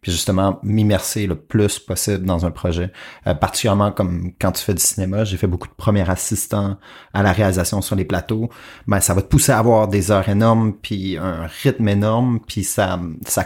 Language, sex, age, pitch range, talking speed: French, male, 30-49, 90-105 Hz, 205 wpm